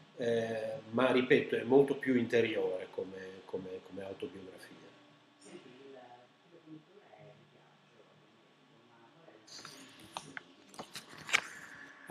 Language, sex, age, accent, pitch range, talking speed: Italian, male, 40-59, native, 110-160 Hz, 85 wpm